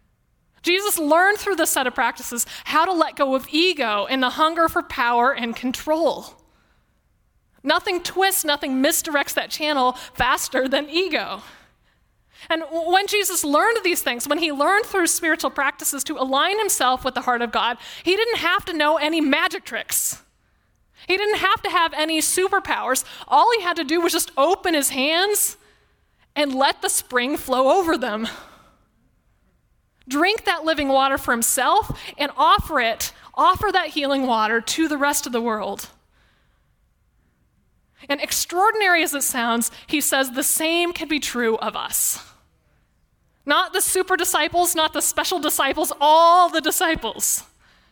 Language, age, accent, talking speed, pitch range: English, 20-39, American, 155 wpm, 265-350 Hz